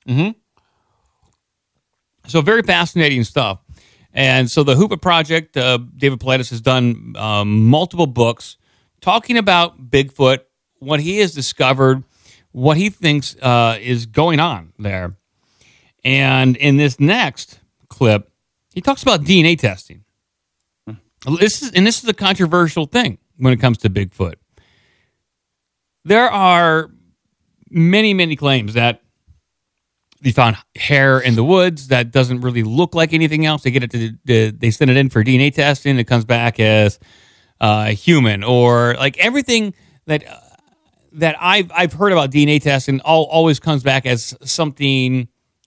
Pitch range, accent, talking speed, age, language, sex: 120-160 Hz, American, 145 wpm, 40-59, English, male